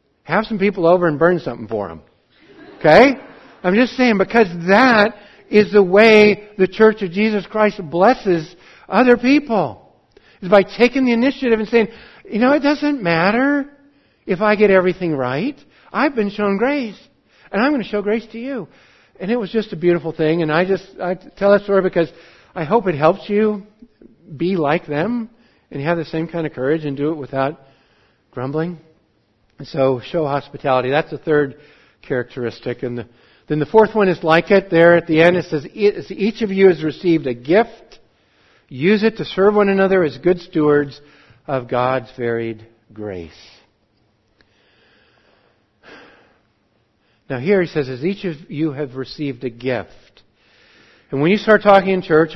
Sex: male